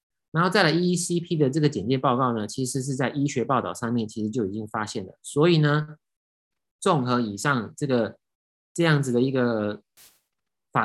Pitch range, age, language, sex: 110-145 Hz, 20-39, Chinese, male